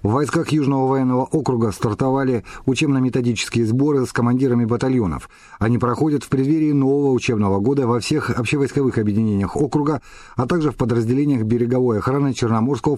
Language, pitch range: Russian, 115-145 Hz